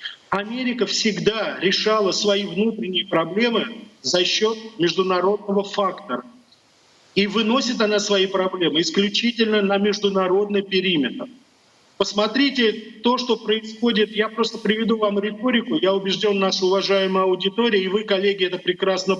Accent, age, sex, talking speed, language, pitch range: native, 40-59, male, 120 wpm, Russian, 195-225 Hz